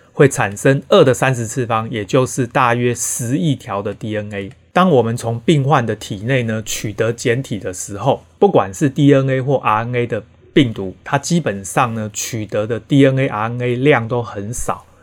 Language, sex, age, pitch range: Chinese, male, 30-49, 110-140 Hz